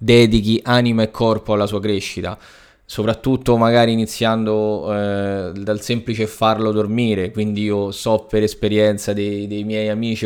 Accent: native